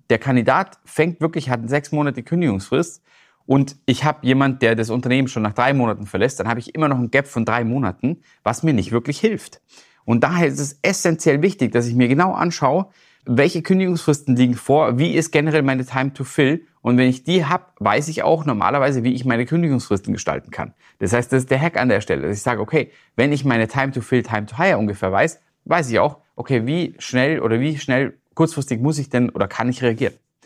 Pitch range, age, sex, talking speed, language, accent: 110-150 Hz, 30-49, male, 225 wpm, German, German